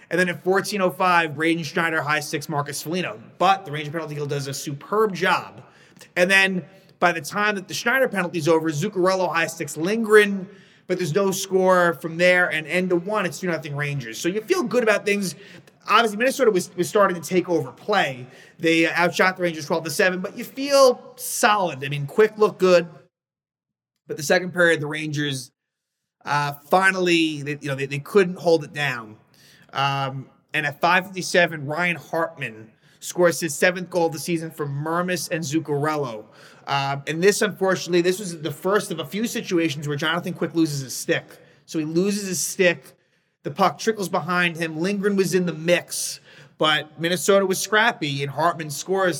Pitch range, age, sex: 155-185 Hz, 30-49, male